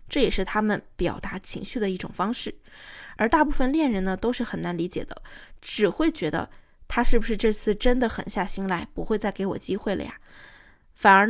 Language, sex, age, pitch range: Chinese, female, 20-39, 195-260 Hz